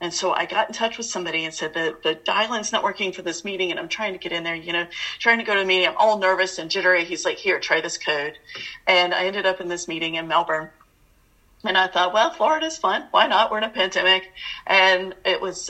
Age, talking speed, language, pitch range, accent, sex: 30-49, 260 wpm, English, 170-200 Hz, American, female